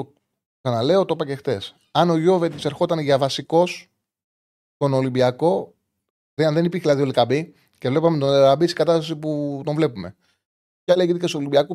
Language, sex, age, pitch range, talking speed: Greek, male, 30-49, 120-160 Hz, 180 wpm